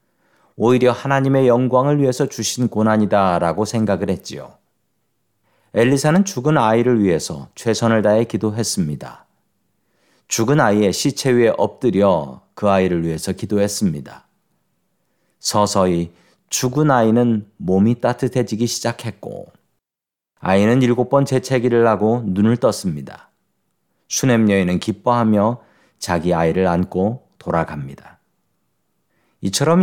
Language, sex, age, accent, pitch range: Korean, male, 40-59, native, 100-125 Hz